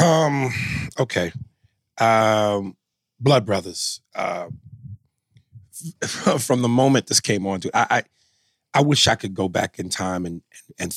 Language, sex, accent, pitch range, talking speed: English, male, American, 95-120 Hz, 135 wpm